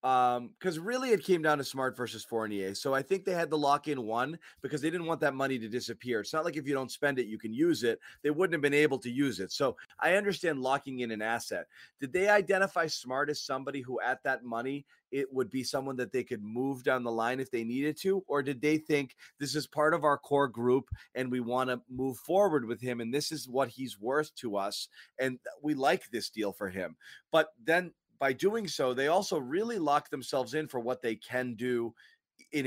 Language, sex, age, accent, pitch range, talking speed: English, male, 30-49, American, 125-160 Hz, 235 wpm